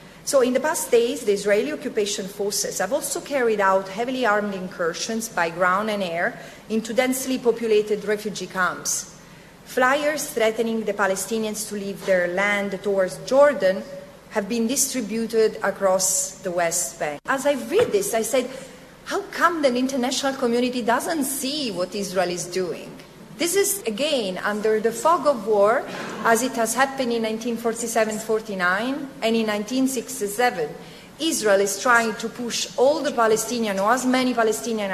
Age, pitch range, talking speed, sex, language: 40-59, 190-245 Hz, 150 wpm, female, English